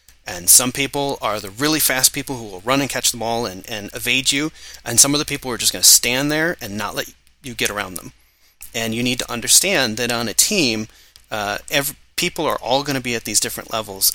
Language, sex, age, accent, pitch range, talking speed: English, male, 30-49, American, 105-130 Hz, 245 wpm